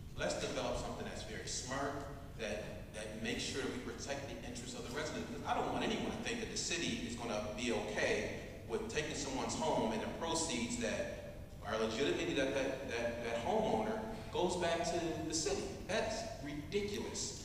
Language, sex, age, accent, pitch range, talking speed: English, male, 40-59, American, 110-130 Hz, 180 wpm